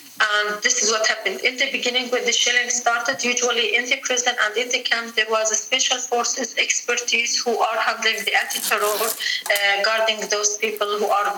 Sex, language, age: female, English, 30-49